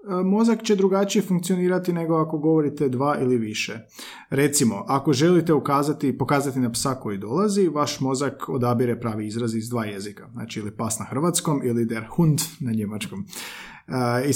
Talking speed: 160 wpm